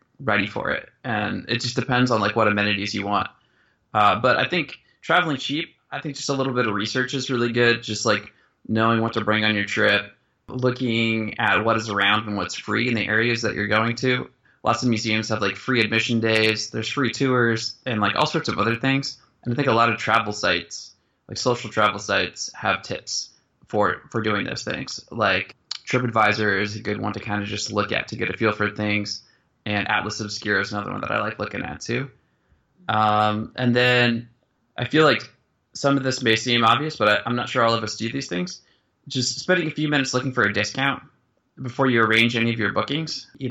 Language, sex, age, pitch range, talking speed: English, male, 20-39, 105-125 Hz, 220 wpm